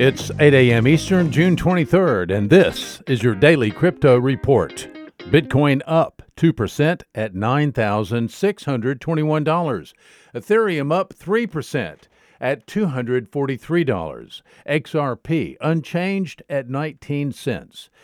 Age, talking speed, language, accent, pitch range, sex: 50-69, 95 wpm, English, American, 130-170 Hz, male